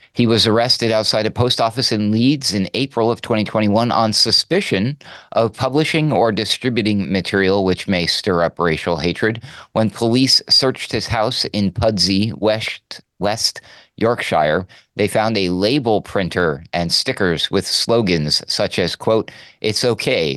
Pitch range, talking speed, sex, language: 100-120 Hz, 145 wpm, male, English